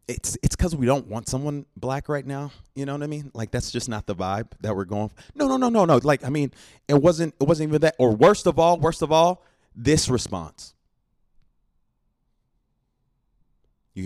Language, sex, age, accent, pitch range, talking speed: English, male, 30-49, American, 120-175 Hz, 210 wpm